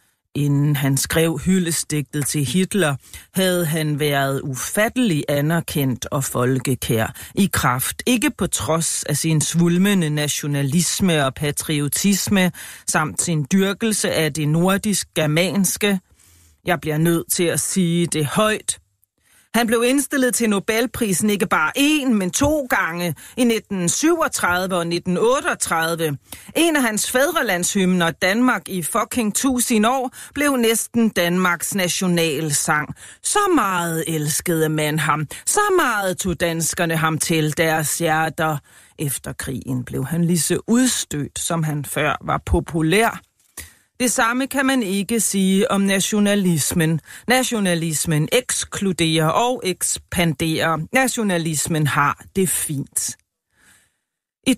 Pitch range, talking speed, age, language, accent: 155-215 Hz, 120 wpm, 40-59, Danish, native